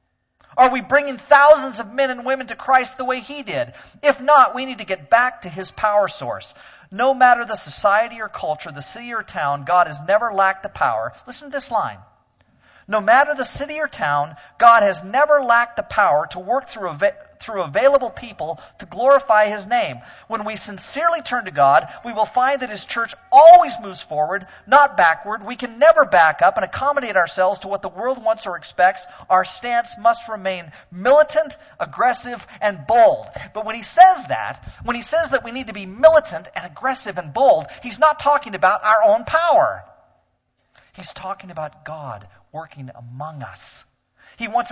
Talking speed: 190 wpm